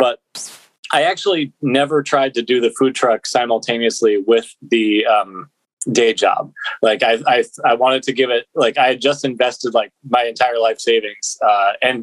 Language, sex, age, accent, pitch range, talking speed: English, male, 20-39, American, 125-170 Hz, 180 wpm